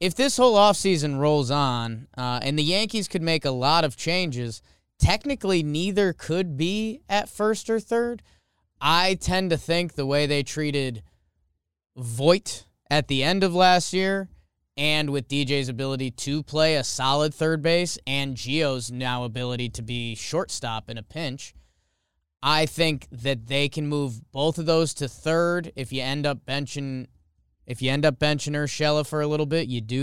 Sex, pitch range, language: male, 130-165 Hz, English